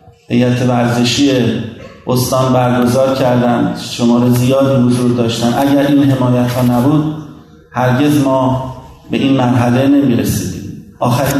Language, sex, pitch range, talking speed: Persian, male, 125-140 Hz, 115 wpm